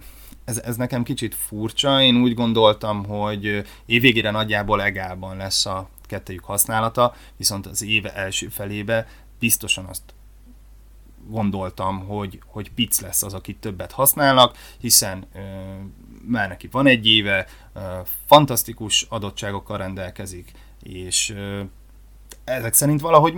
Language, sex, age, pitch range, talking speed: Hungarian, male, 20-39, 100-125 Hz, 125 wpm